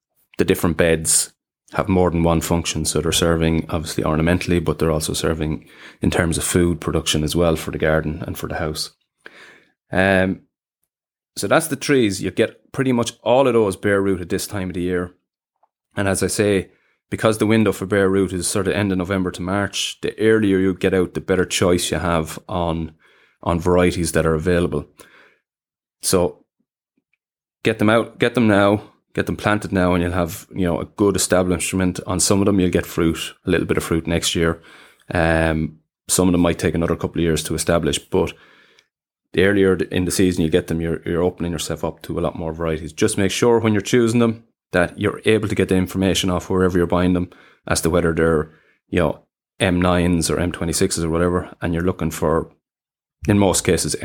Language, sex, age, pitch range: English, male, 30-49, 80-95 Hz